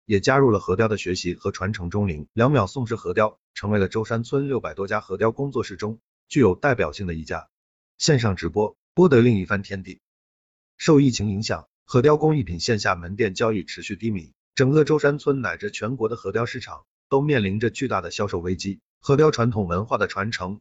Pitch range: 95-130 Hz